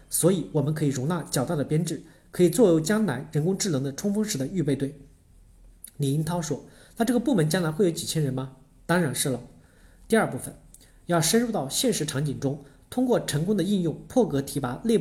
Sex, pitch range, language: male, 135-190 Hz, Chinese